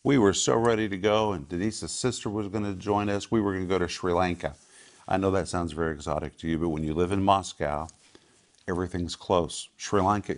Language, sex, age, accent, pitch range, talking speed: English, male, 50-69, American, 85-105 Hz, 230 wpm